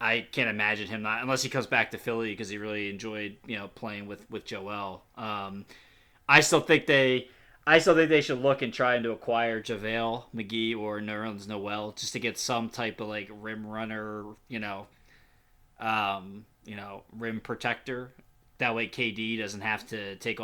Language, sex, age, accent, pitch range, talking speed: English, male, 20-39, American, 110-135 Hz, 190 wpm